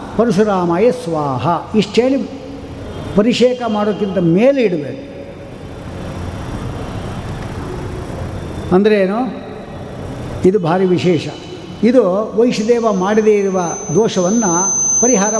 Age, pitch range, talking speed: 60-79, 155-220 Hz, 70 wpm